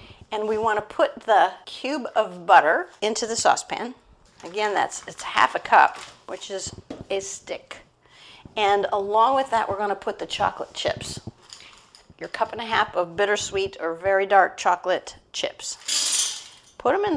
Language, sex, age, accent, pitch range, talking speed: English, female, 50-69, American, 185-225 Hz, 160 wpm